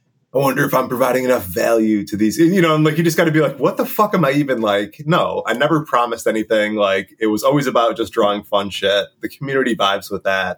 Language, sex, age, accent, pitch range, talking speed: English, male, 20-39, American, 105-150 Hz, 255 wpm